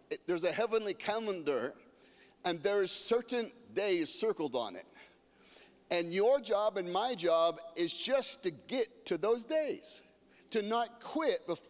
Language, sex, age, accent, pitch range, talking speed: English, male, 40-59, American, 165-250 Hz, 140 wpm